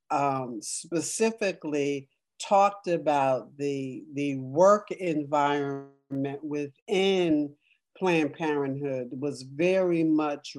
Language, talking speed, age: English, 80 wpm, 50-69